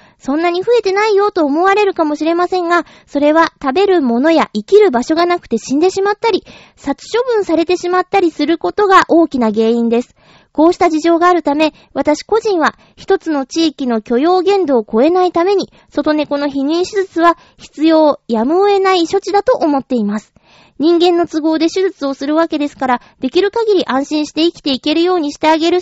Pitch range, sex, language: 280-365 Hz, female, Japanese